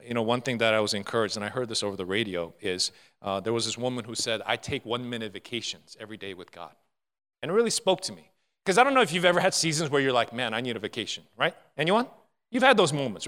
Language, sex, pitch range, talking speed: English, male, 115-195 Hz, 270 wpm